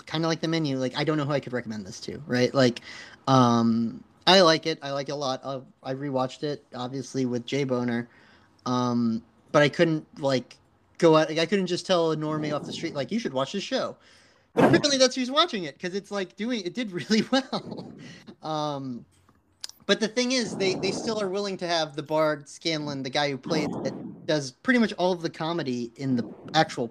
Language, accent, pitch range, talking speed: English, American, 135-175 Hz, 225 wpm